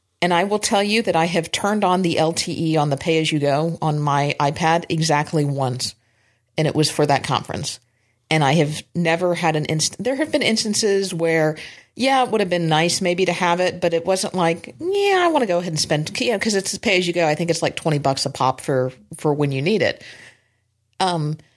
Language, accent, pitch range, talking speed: English, American, 140-175 Hz, 225 wpm